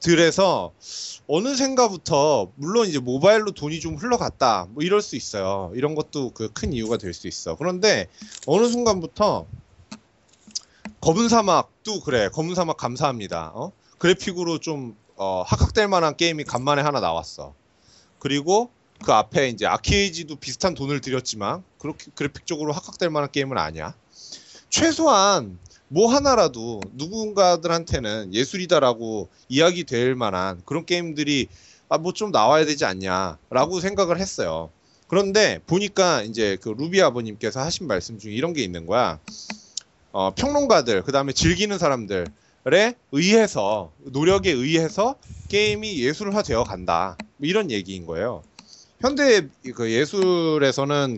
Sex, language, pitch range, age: male, Korean, 120-195 Hz, 30-49